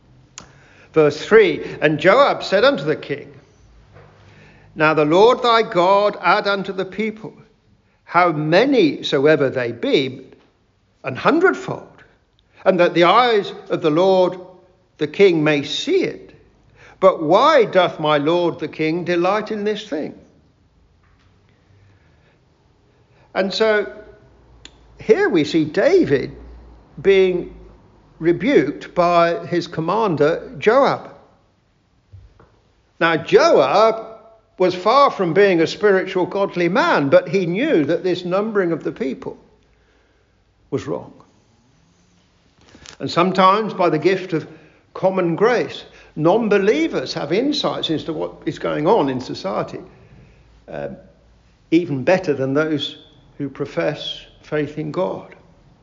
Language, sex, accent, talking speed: English, male, British, 115 wpm